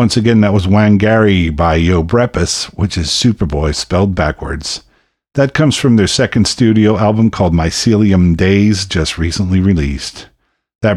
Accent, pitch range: American, 90-105 Hz